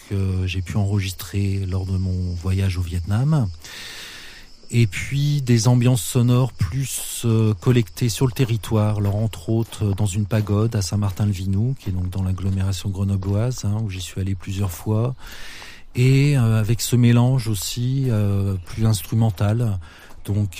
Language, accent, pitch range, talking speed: French, French, 95-120 Hz, 150 wpm